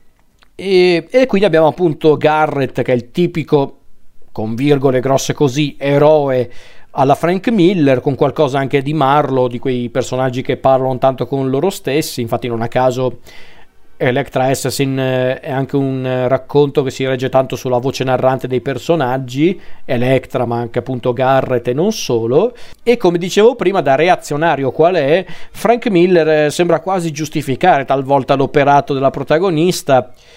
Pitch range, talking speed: 130-155 Hz, 150 wpm